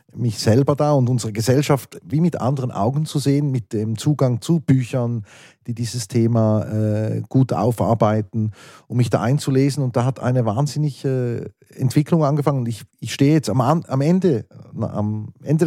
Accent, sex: Austrian, male